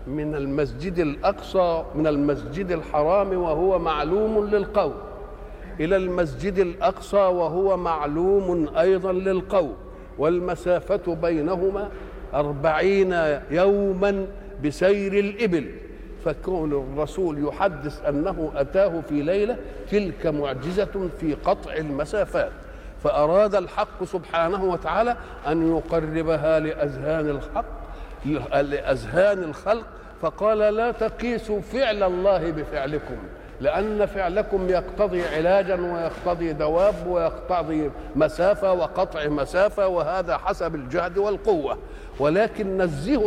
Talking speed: 90 wpm